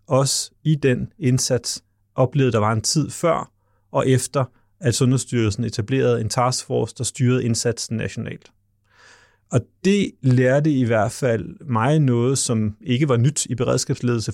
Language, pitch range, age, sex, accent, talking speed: Danish, 115-140 Hz, 30-49, male, native, 145 wpm